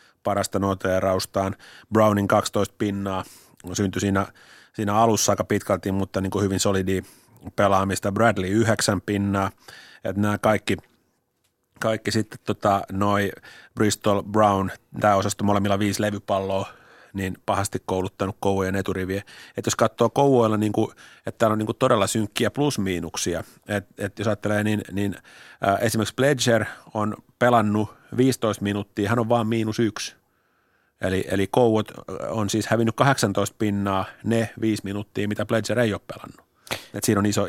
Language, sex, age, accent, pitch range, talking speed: Finnish, male, 30-49, native, 100-110 Hz, 145 wpm